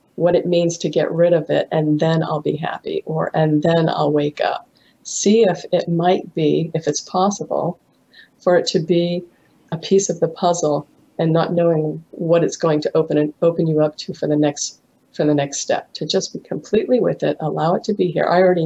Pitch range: 165-195 Hz